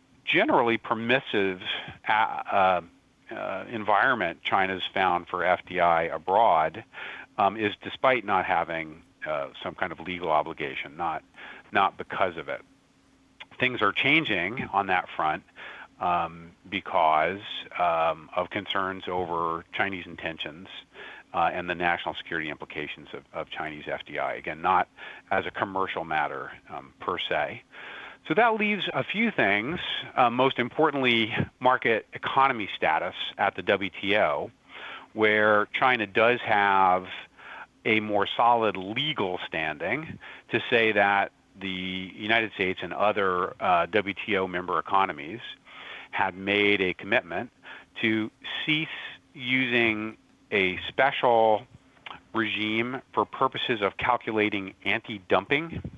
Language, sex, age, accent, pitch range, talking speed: English, male, 40-59, American, 95-120 Hz, 120 wpm